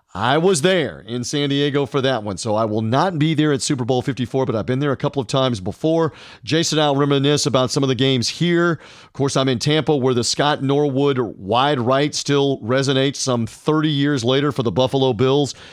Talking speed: 220 wpm